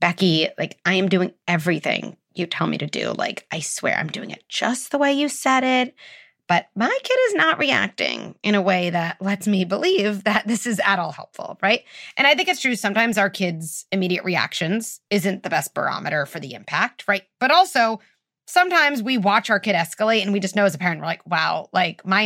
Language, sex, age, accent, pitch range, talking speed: English, female, 30-49, American, 185-250 Hz, 220 wpm